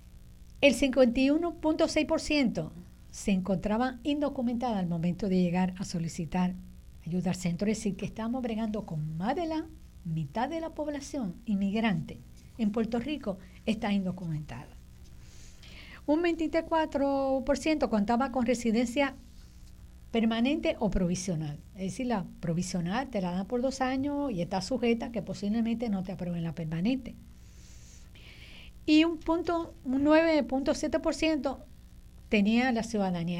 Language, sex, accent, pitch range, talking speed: Spanish, female, American, 185-260 Hz, 120 wpm